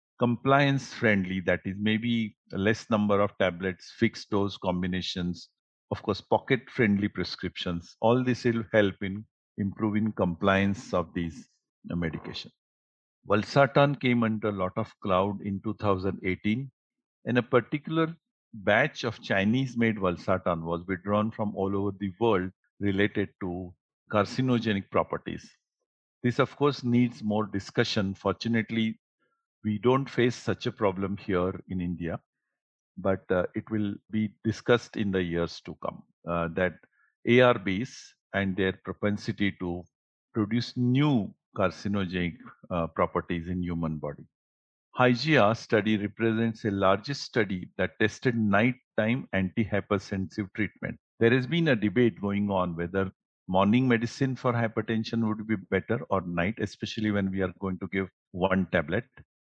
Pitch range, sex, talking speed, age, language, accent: 95-115 Hz, male, 135 wpm, 50-69, English, Indian